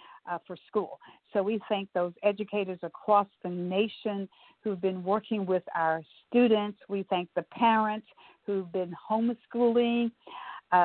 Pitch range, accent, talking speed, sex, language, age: 175-210 Hz, American, 140 wpm, female, English, 50-69